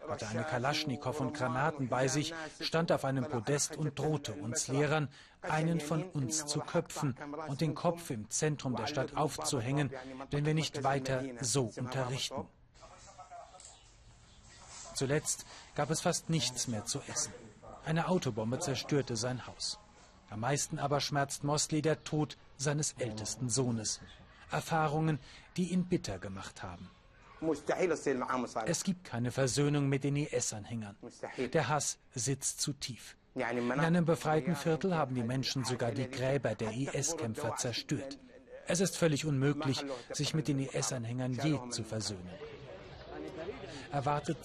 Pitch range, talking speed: 125-155 Hz, 135 wpm